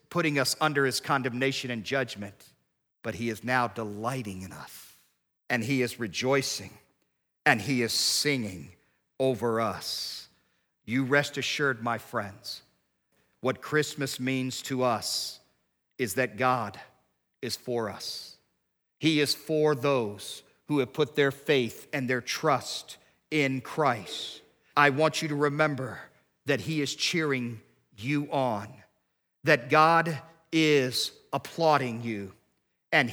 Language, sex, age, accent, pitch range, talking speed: English, male, 50-69, American, 120-155 Hz, 130 wpm